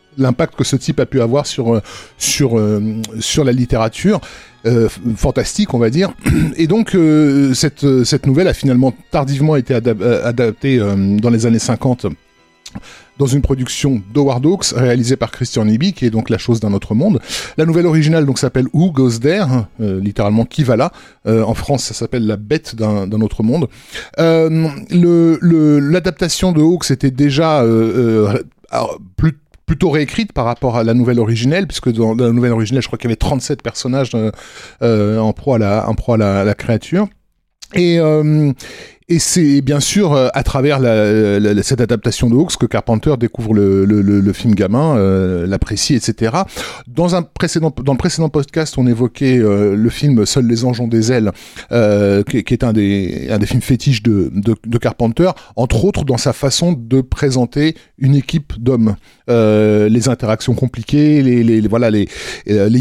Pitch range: 110-145 Hz